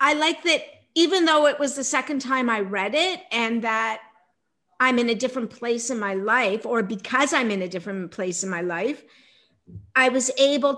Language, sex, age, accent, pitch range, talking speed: English, female, 50-69, American, 210-270 Hz, 200 wpm